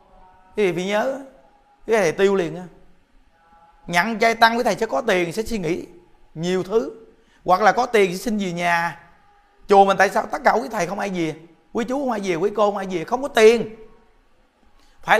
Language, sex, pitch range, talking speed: Vietnamese, male, 170-230 Hz, 215 wpm